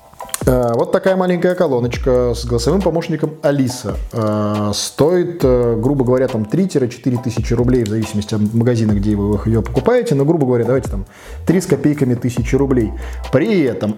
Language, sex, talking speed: Russian, male, 150 wpm